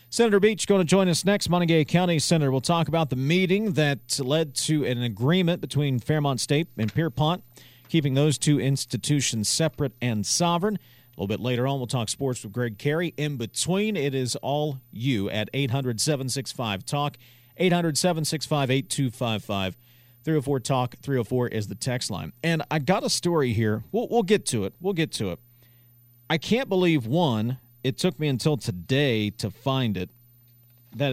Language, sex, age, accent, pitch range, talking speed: English, male, 40-59, American, 120-165 Hz, 170 wpm